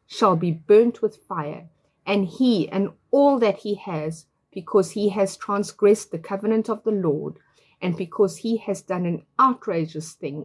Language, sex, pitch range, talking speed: English, female, 160-225 Hz, 165 wpm